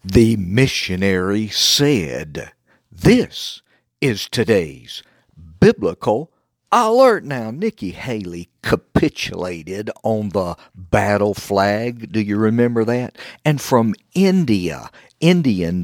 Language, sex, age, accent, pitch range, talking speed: English, male, 60-79, American, 95-135 Hz, 90 wpm